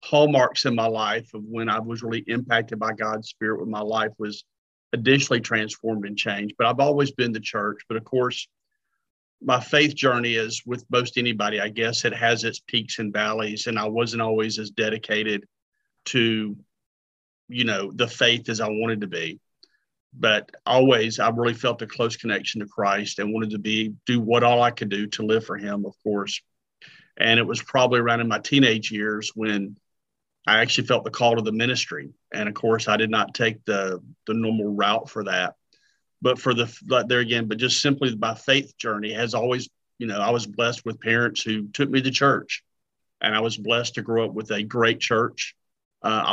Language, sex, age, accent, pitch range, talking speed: English, male, 50-69, American, 110-120 Hz, 200 wpm